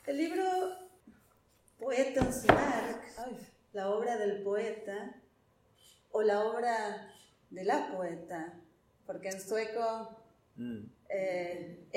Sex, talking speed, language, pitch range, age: female, 90 wpm, Spanish, 200-245 Hz, 30-49